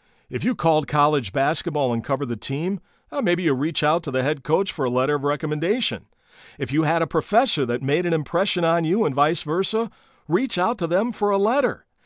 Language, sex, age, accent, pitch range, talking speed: English, male, 50-69, American, 135-180 Hz, 215 wpm